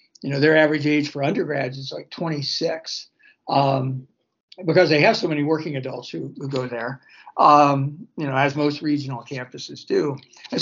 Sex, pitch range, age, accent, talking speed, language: male, 145-180 Hz, 60-79, American, 175 wpm, English